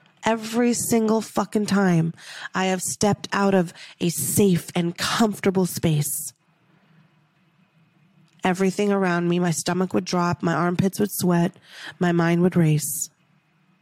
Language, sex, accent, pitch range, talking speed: English, female, American, 170-225 Hz, 125 wpm